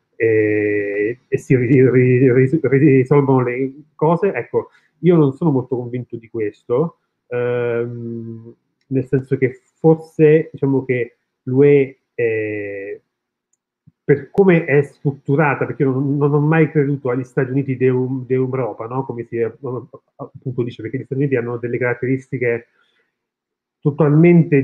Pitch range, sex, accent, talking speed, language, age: 125-145 Hz, male, native, 130 wpm, Italian, 30-49